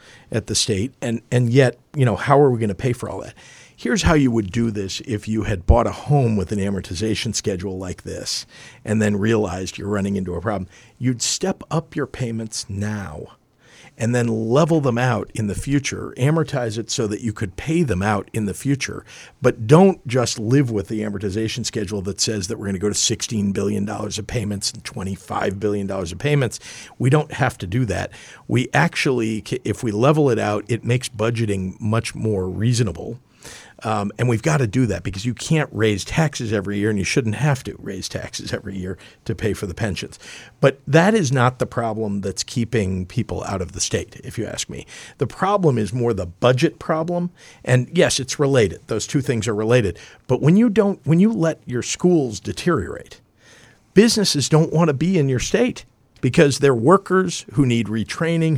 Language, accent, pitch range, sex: English, American, 105-140 Hz, male